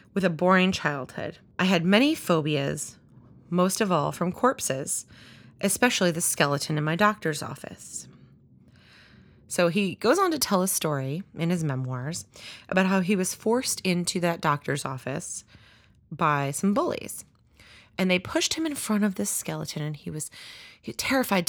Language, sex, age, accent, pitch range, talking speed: English, female, 30-49, American, 140-185 Hz, 155 wpm